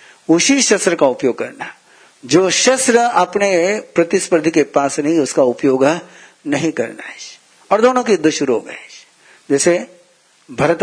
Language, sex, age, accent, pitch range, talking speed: Hindi, male, 60-79, native, 140-175 Hz, 150 wpm